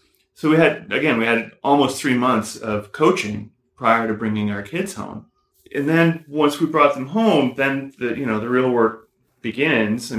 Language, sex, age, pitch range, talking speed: English, male, 30-49, 110-125 Hz, 195 wpm